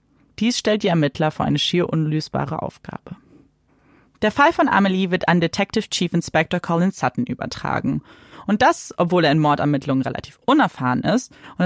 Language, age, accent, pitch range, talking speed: German, 30-49, German, 150-215 Hz, 160 wpm